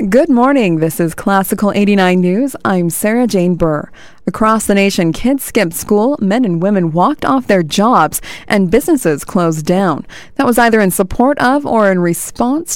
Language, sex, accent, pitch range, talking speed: English, female, American, 170-225 Hz, 170 wpm